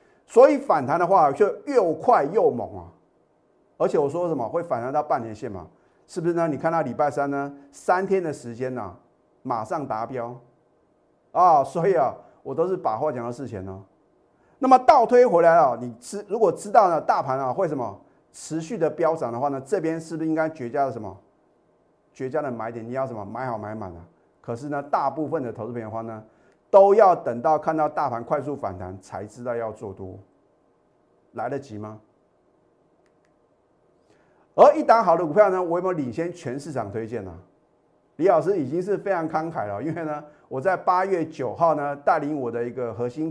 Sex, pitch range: male, 115-170 Hz